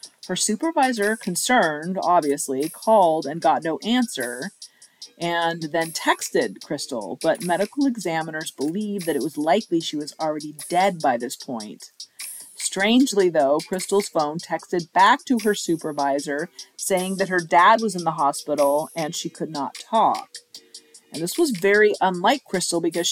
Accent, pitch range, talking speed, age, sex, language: American, 160-200 Hz, 150 wpm, 40-59, female, English